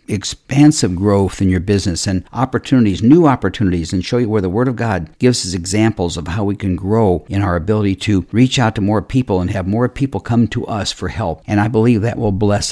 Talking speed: 230 wpm